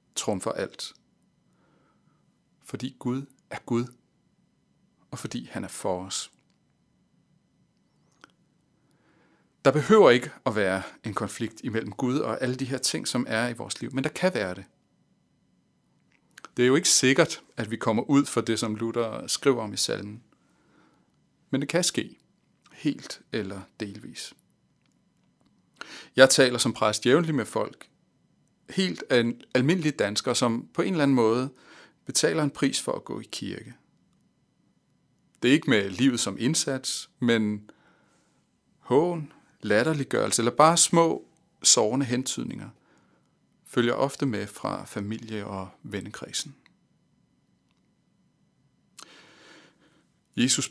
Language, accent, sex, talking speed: Danish, native, male, 130 wpm